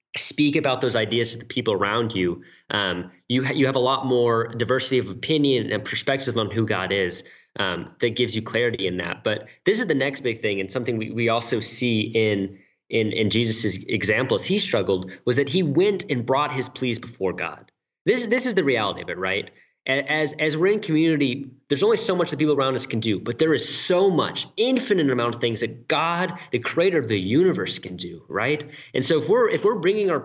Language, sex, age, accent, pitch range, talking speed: English, male, 20-39, American, 125-185 Hz, 225 wpm